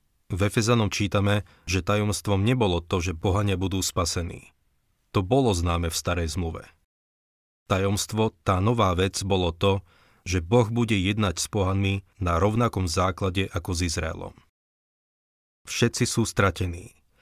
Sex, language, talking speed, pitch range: male, Slovak, 130 wpm, 90-105 Hz